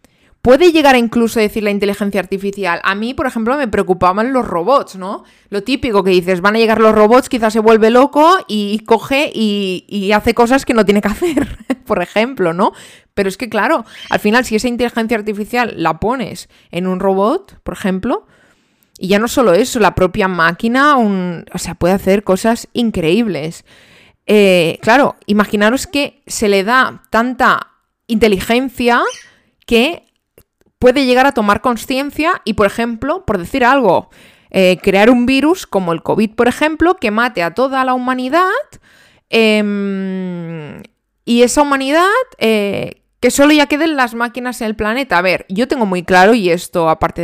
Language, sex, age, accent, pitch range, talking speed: Spanish, female, 20-39, Spanish, 185-250 Hz, 170 wpm